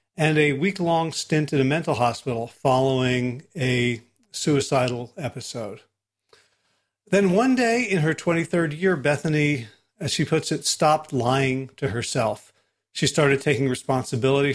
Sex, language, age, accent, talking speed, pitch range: male, English, 40-59, American, 130 wpm, 130-165 Hz